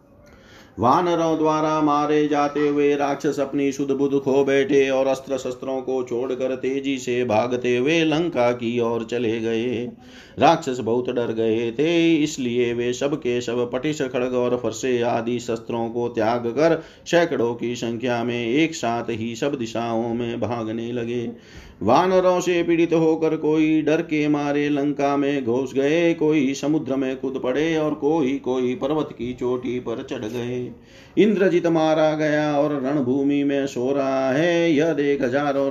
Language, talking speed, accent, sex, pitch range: Hindi, 155 wpm, native, male, 120-150 Hz